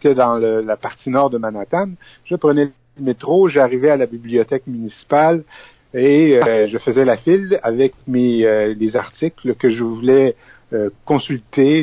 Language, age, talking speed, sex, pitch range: French, 60-79, 160 wpm, male, 115-145 Hz